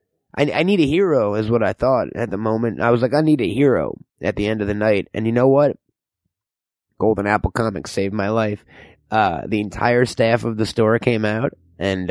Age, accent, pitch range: 30-49, American, 110-150 Hz